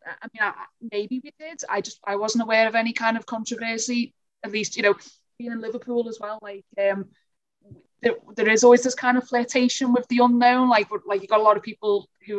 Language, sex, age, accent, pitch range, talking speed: English, female, 20-39, British, 205-245 Hz, 230 wpm